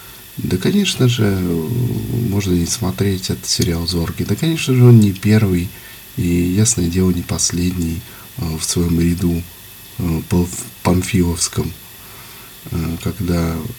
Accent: native